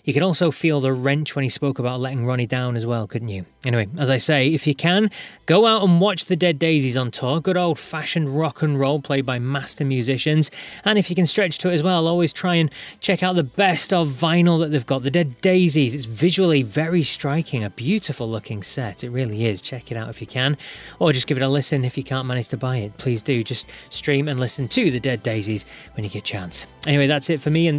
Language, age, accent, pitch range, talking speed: English, 20-39, British, 125-175 Hz, 250 wpm